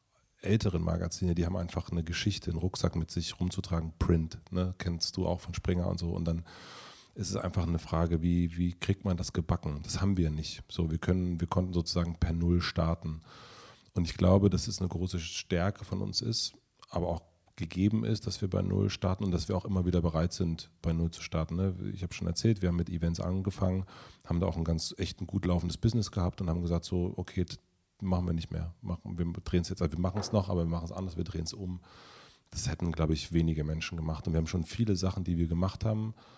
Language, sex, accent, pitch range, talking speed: German, male, German, 85-95 Hz, 235 wpm